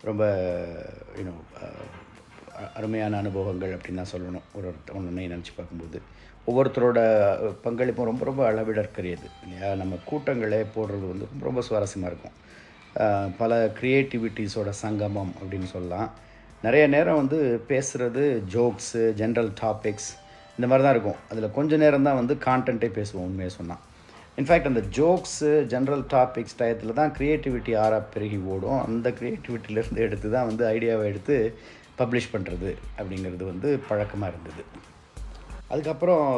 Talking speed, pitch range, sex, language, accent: 115 wpm, 95-120 Hz, male, Tamil, native